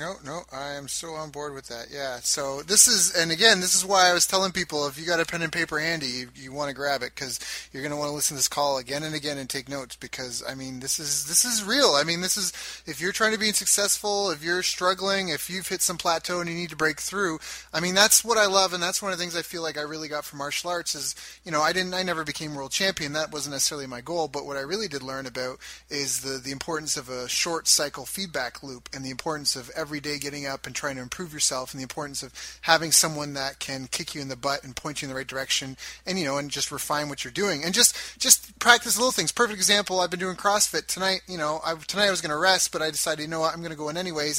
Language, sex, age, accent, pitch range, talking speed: English, male, 30-49, American, 145-185 Hz, 290 wpm